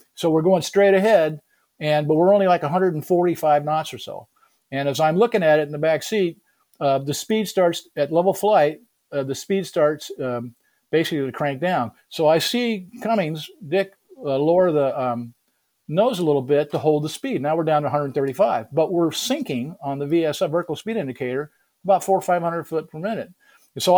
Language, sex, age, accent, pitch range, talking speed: English, male, 50-69, American, 145-185 Hz, 200 wpm